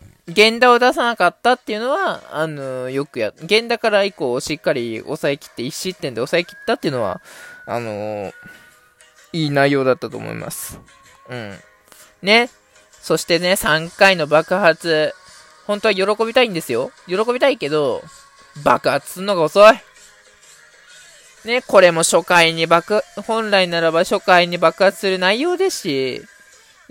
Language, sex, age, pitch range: Japanese, male, 20-39, 155-230 Hz